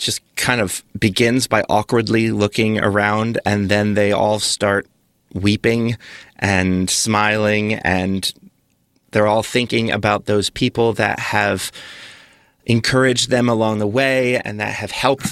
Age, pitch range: 30-49, 100-115 Hz